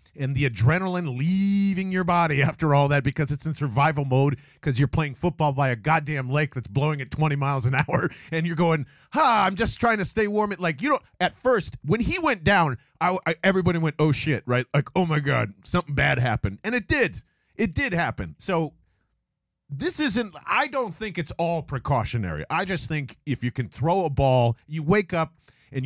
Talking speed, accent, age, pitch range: 210 wpm, American, 40-59, 140-185 Hz